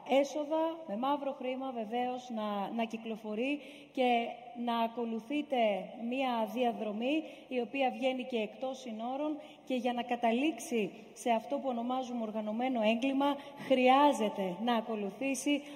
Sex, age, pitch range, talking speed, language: female, 20-39, 220-260 Hz, 120 wpm, Greek